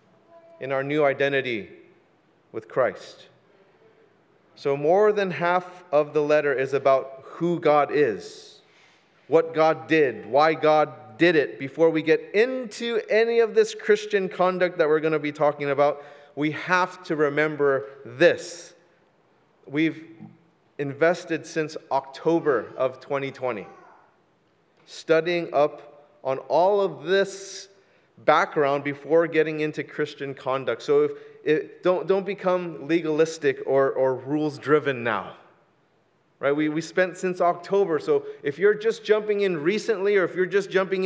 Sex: male